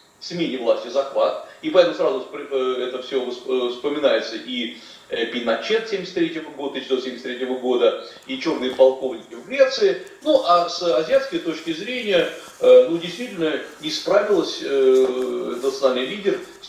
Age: 40-59